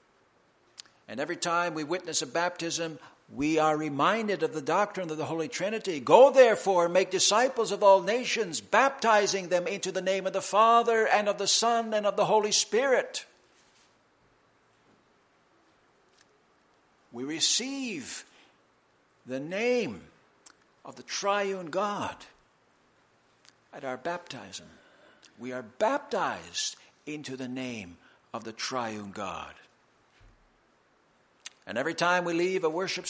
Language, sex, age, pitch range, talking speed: English, male, 60-79, 130-200 Hz, 125 wpm